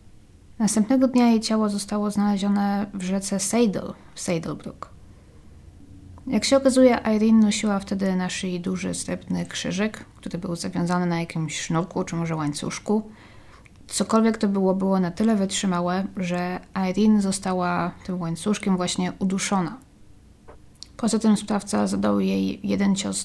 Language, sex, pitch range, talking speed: Polish, female, 165-210 Hz, 135 wpm